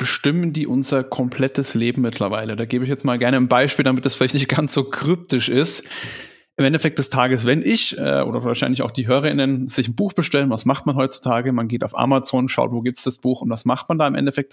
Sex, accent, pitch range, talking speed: male, German, 120-140 Hz, 240 wpm